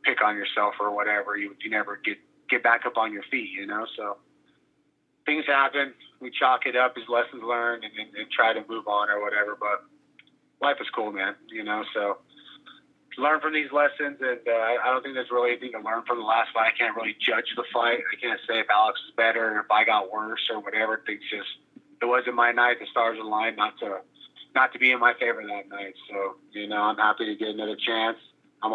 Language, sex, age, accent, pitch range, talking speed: English, male, 30-49, American, 110-140 Hz, 230 wpm